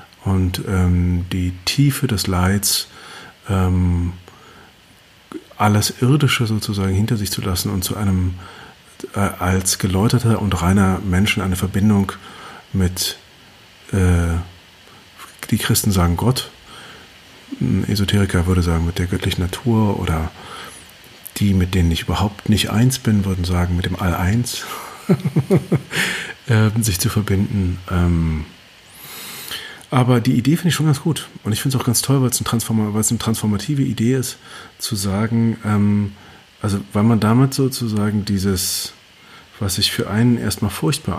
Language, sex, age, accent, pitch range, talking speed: German, male, 40-59, German, 95-115 Hz, 135 wpm